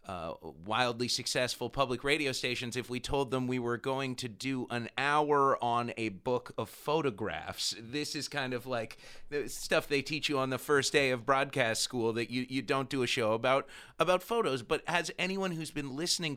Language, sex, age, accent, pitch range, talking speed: English, male, 30-49, American, 115-145 Hz, 200 wpm